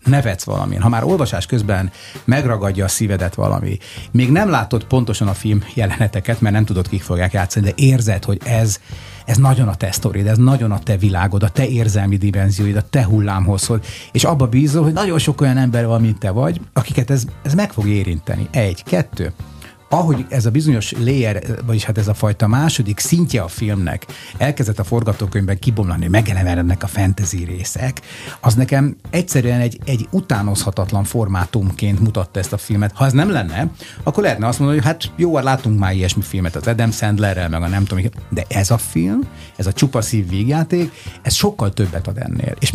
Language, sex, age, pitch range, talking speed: Hungarian, male, 30-49, 100-130 Hz, 185 wpm